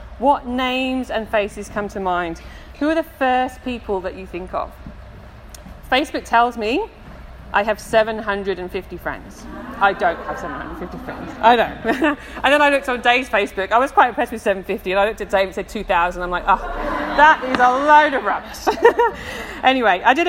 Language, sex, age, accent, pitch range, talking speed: English, female, 30-49, British, 195-255 Hz, 190 wpm